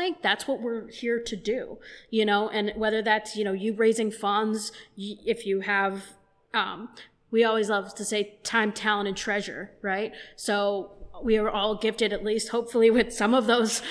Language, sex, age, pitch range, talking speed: English, female, 20-39, 205-235 Hz, 180 wpm